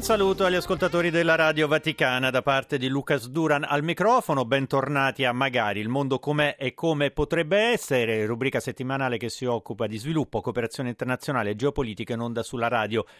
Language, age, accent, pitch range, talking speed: Italian, 30-49, native, 120-150 Hz, 175 wpm